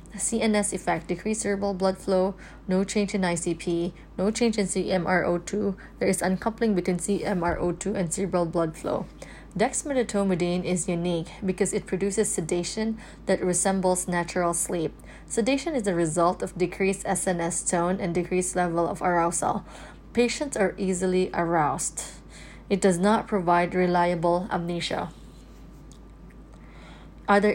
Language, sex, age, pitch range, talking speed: English, female, 20-39, 175-205 Hz, 125 wpm